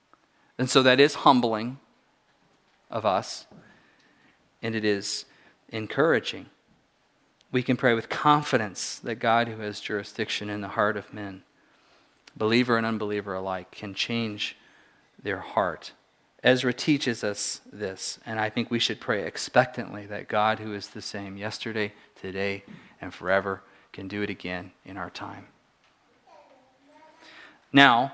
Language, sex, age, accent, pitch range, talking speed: English, male, 40-59, American, 105-130 Hz, 135 wpm